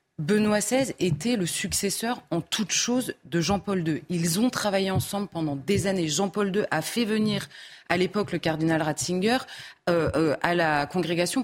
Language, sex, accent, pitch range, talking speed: French, female, French, 165-210 Hz, 175 wpm